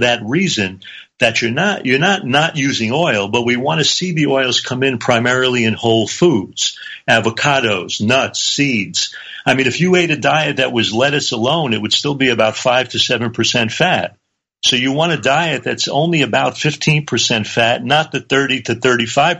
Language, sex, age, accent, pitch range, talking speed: English, male, 50-69, American, 115-140 Hz, 195 wpm